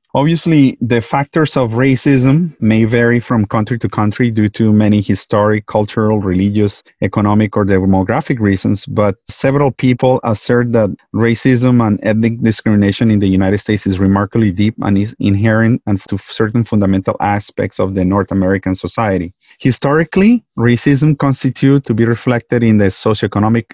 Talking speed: 150 wpm